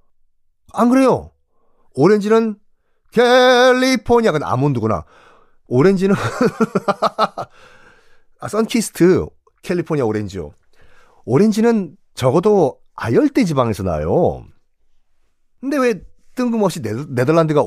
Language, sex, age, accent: Korean, male, 40-59, native